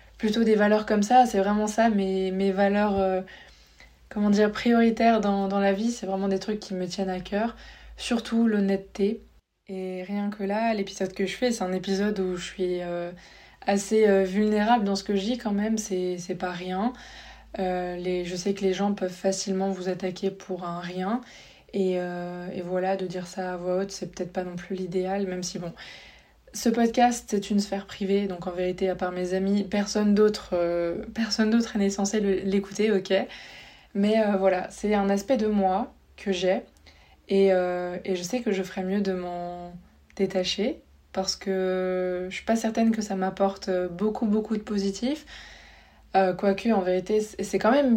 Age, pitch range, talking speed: 20-39, 185-215 Hz, 195 wpm